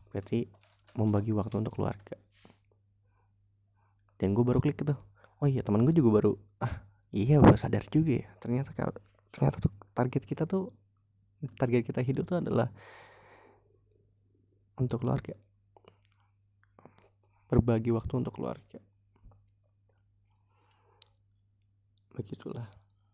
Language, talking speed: Indonesian, 105 wpm